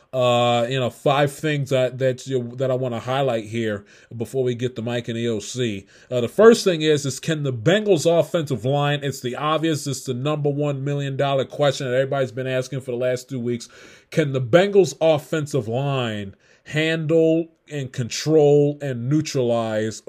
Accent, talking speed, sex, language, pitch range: American, 190 wpm, male, English, 120-140 Hz